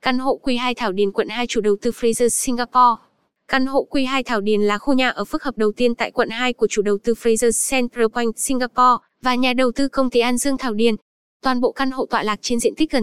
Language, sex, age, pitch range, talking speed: Vietnamese, female, 10-29, 225-265 Hz, 260 wpm